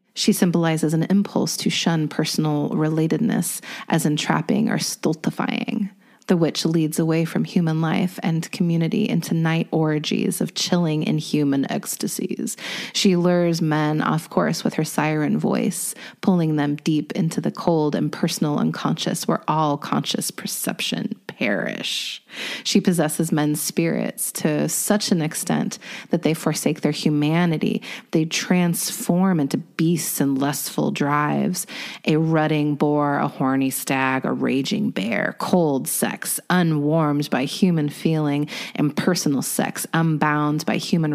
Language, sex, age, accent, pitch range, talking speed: English, female, 30-49, American, 155-205 Hz, 135 wpm